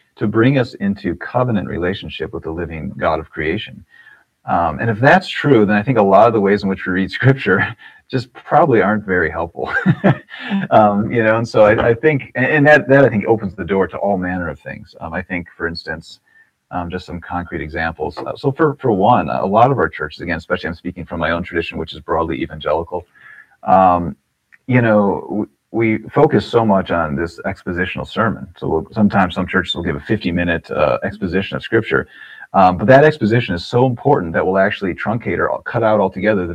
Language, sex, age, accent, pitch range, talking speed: English, male, 40-59, American, 85-115 Hz, 210 wpm